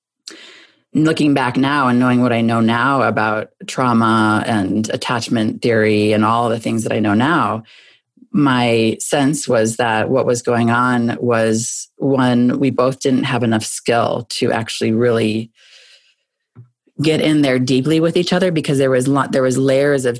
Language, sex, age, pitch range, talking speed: English, female, 30-49, 120-140 Hz, 165 wpm